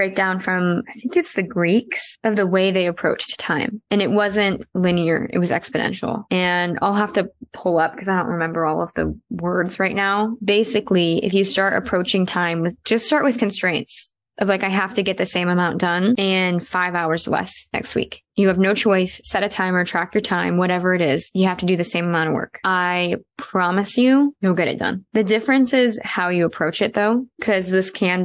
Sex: female